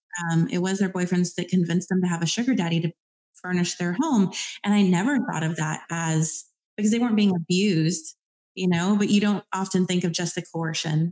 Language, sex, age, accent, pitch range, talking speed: English, female, 30-49, American, 165-205 Hz, 215 wpm